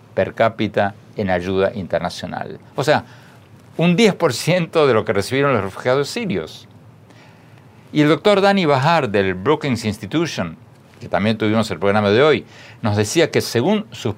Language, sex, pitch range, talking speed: Spanish, male, 105-140 Hz, 150 wpm